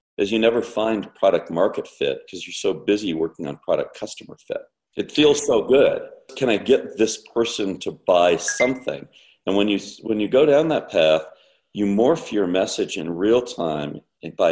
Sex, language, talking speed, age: male, English, 185 wpm, 50-69